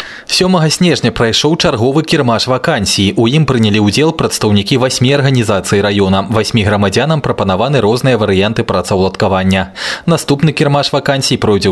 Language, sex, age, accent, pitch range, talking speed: Russian, male, 20-39, native, 100-140 Hz, 125 wpm